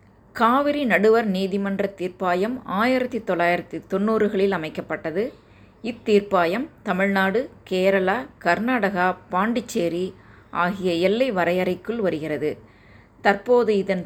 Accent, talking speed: native, 75 wpm